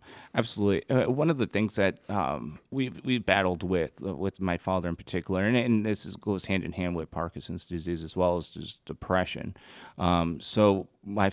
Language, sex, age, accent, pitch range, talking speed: English, male, 30-49, American, 85-100 Hz, 205 wpm